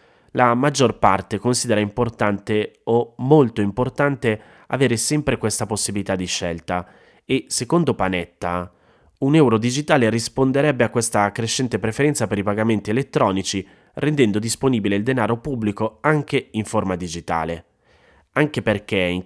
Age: 30-49